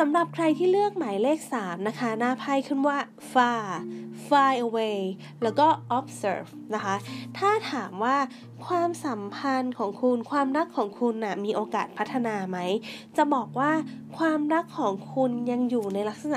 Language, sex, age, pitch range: Thai, female, 20-39, 205-265 Hz